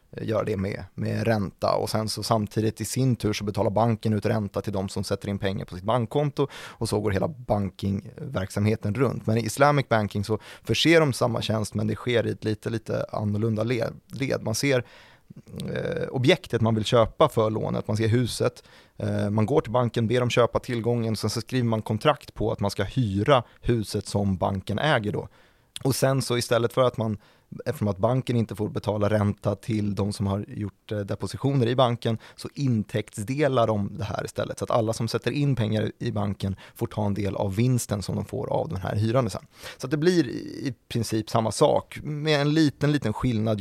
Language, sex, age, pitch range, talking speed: Swedish, male, 30-49, 105-125 Hz, 210 wpm